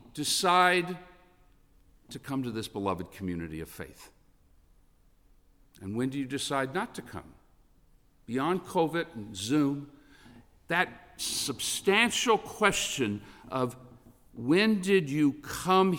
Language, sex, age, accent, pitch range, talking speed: English, male, 50-69, American, 110-175 Hz, 110 wpm